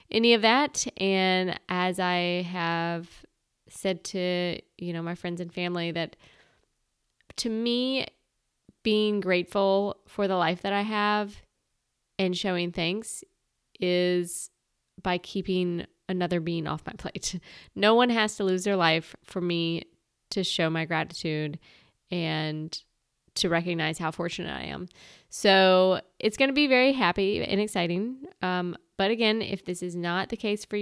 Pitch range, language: 175-205 Hz, English